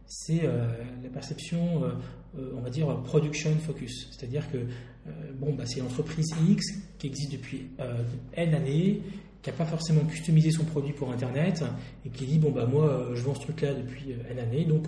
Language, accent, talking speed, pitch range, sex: French, French, 200 wpm, 130-160 Hz, male